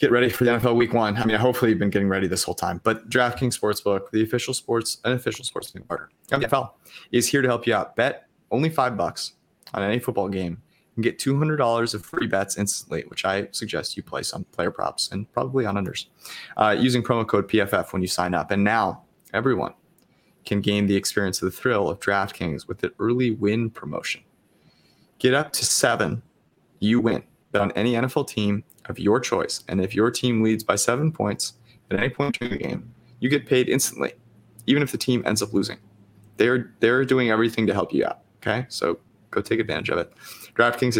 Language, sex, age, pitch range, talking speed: English, male, 20-39, 100-120 Hz, 210 wpm